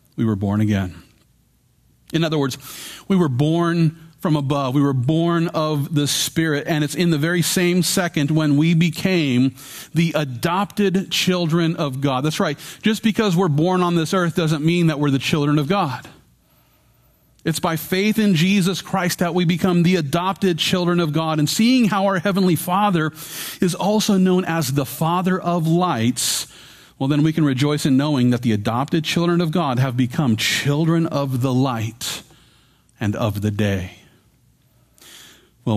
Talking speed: 170 wpm